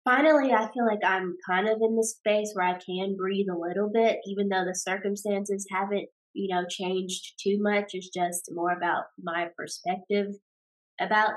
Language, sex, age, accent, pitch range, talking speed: English, female, 20-39, American, 180-200 Hz, 180 wpm